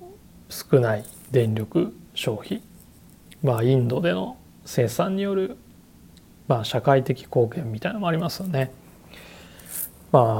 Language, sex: Japanese, male